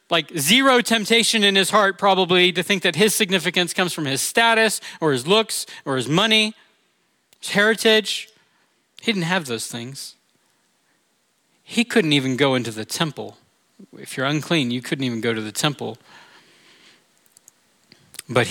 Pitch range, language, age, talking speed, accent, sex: 135-185 Hz, English, 40-59, 150 wpm, American, male